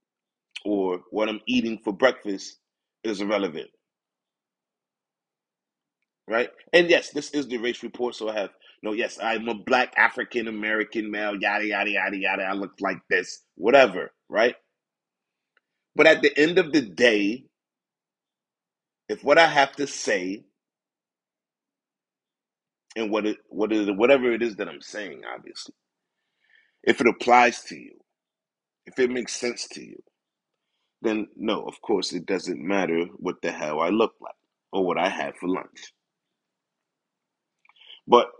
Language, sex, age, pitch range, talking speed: English, male, 30-49, 95-130 Hz, 145 wpm